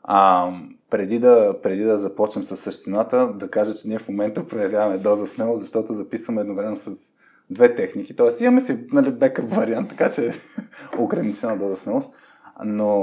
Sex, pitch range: male, 100-140 Hz